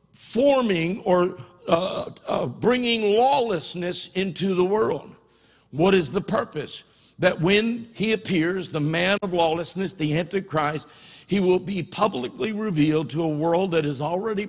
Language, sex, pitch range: English, male, 150-195 Hz